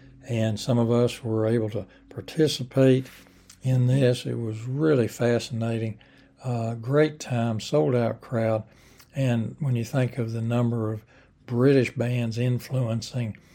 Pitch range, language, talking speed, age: 115-130 Hz, English, 135 wpm, 60-79